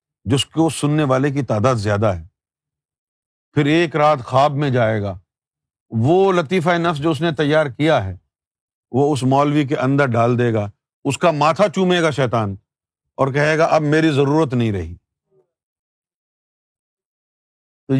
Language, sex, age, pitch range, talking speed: Urdu, male, 50-69, 130-180 Hz, 155 wpm